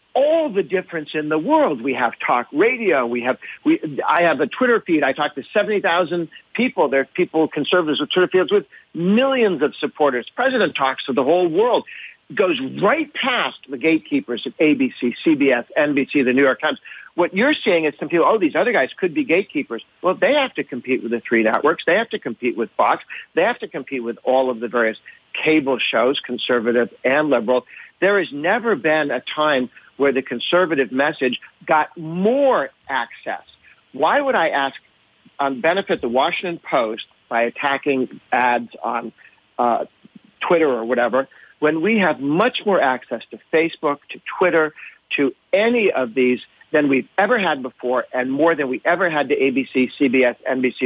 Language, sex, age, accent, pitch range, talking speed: English, male, 60-79, American, 130-190 Hz, 185 wpm